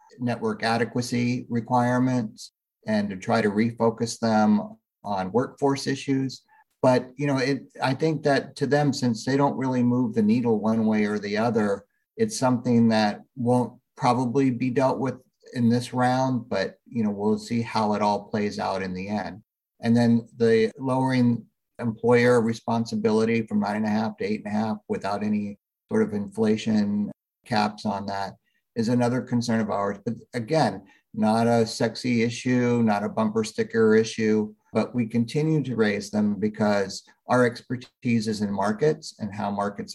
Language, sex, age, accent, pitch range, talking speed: English, male, 50-69, American, 105-130 Hz, 170 wpm